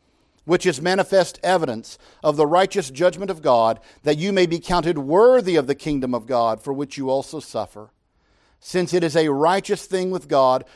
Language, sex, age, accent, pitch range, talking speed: English, male, 50-69, American, 110-155 Hz, 190 wpm